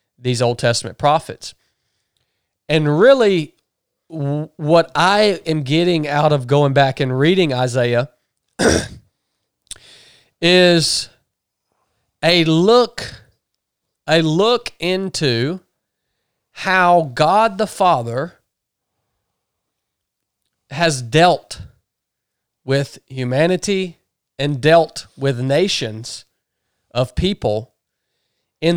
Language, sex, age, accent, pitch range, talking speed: English, male, 40-59, American, 135-190 Hz, 80 wpm